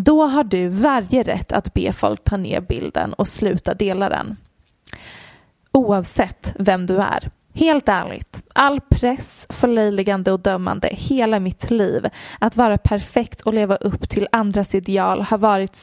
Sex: female